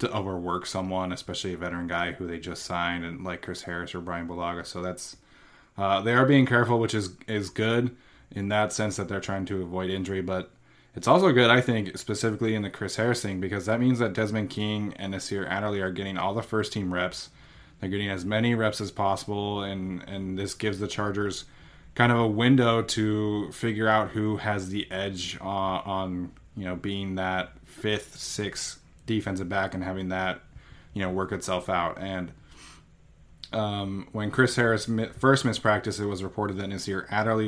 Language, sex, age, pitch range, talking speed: English, male, 20-39, 95-110 Hz, 195 wpm